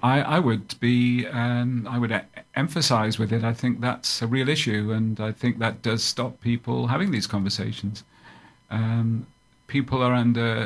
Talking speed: 170 wpm